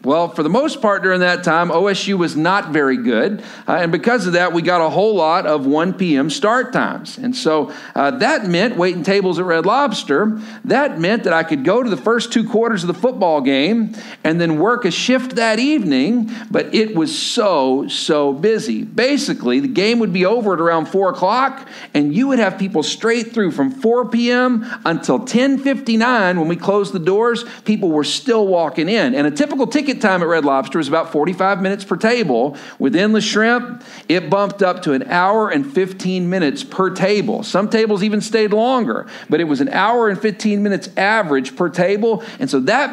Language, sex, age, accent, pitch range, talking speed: English, male, 50-69, American, 180-245 Hz, 205 wpm